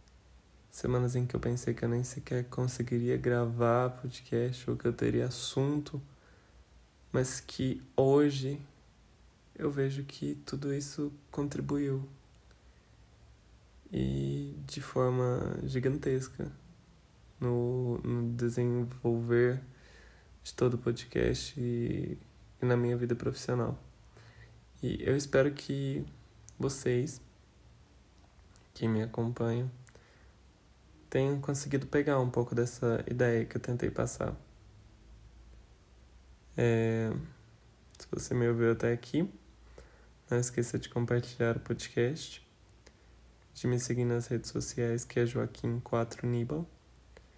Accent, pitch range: Brazilian, 115-130 Hz